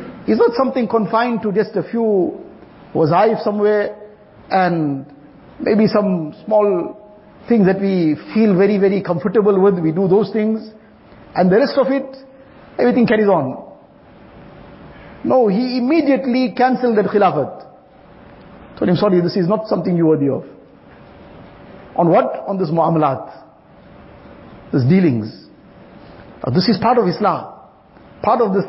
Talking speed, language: 140 wpm, English